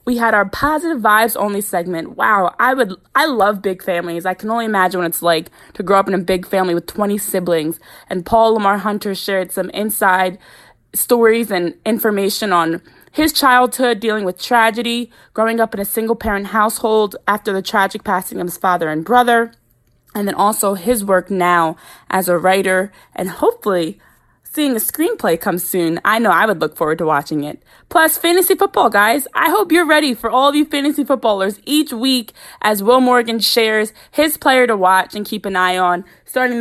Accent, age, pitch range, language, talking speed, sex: American, 20-39, 185-245 Hz, English, 195 wpm, female